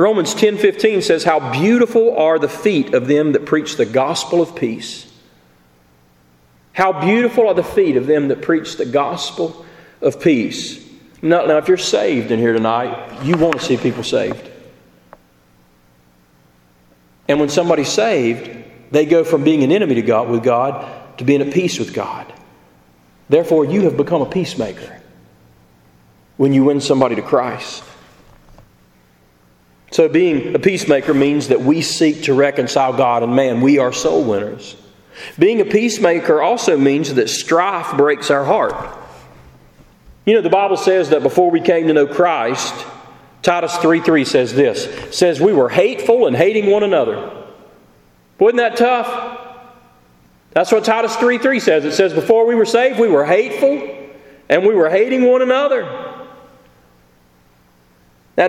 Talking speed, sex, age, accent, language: 155 wpm, male, 40-59, American, English